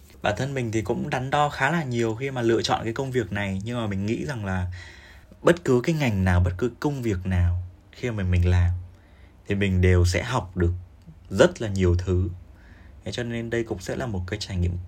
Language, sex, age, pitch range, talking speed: Vietnamese, male, 20-39, 90-120 Hz, 235 wpm